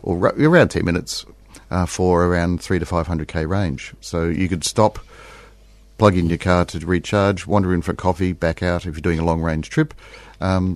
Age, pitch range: 50-69, 80-95 Hz